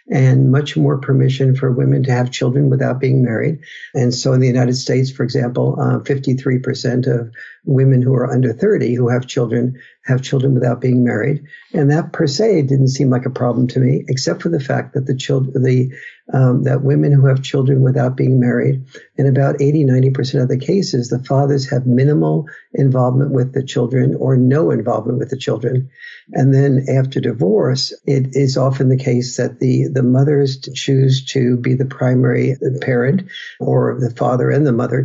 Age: 60-79